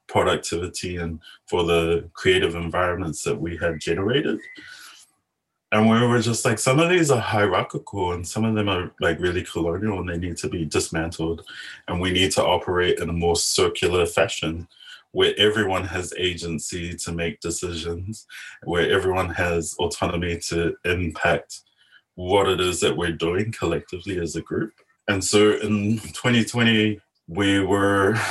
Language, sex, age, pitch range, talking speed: English, male, 20-39, 85-110 Hz, 155 wpm